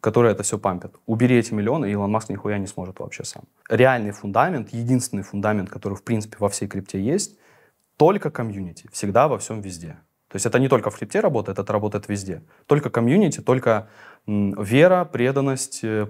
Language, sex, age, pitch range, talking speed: Russian, male, 20-39, 105-130 Hz, 180 wpm